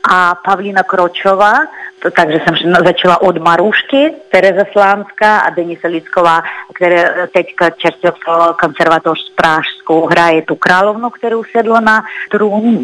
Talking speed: 120 wpm